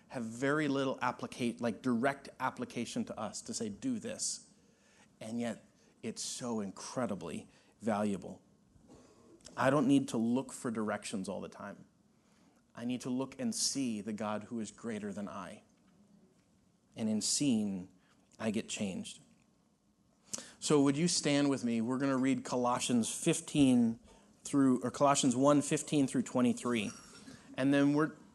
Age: 30-49